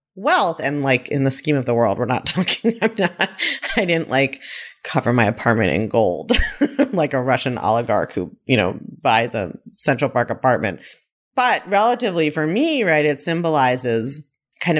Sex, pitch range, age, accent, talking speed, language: female, 130-200 Hz, 30-49, American, 170 wpm, English